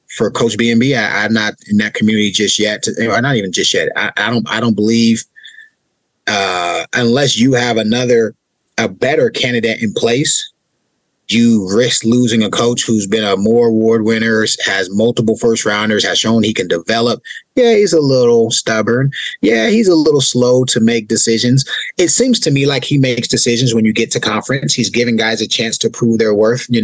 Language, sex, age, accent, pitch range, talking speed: English, male, 30-49, American, 115-135 Hz, 195 wpm